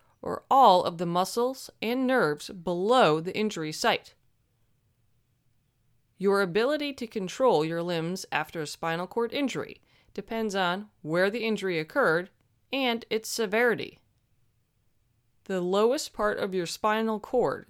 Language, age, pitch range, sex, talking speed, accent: English, 30-49, 145-215 Hz, female, 130 wpm, American